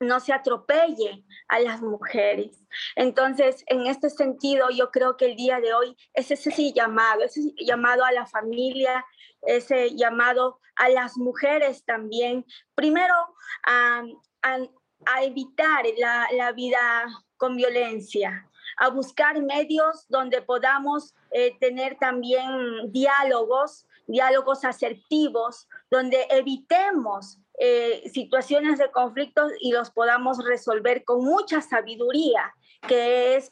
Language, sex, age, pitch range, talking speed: Spanish, female, 20-39, 250-300 Hz, 125 wpm